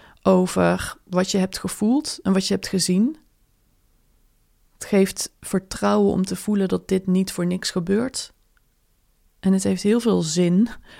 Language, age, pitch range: Dutch, 20-39, 175-195 Hz